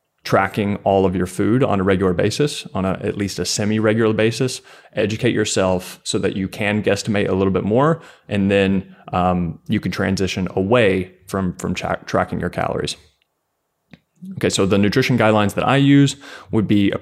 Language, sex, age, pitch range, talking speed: English, male, 30-49, 95-110 Hz, 180 wpm